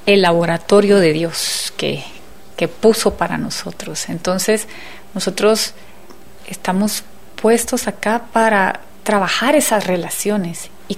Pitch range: 180-225 Hz